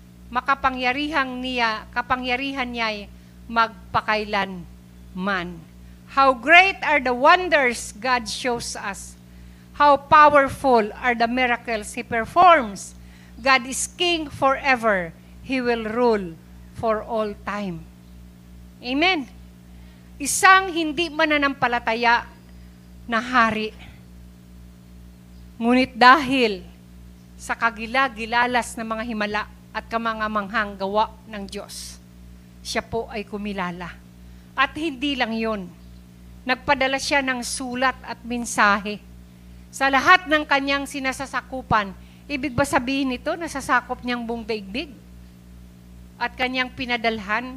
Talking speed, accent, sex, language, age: 100 wpm, native, female, Filipino, 40-59